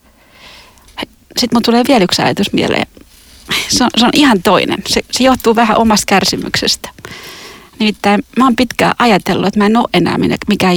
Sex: female